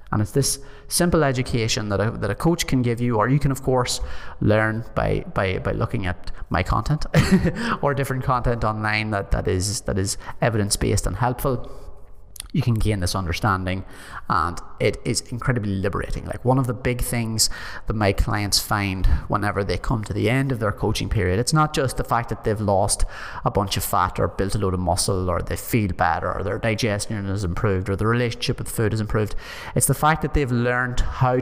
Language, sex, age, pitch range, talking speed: English, male, 30-49, 100-125 Hz, 210 wpm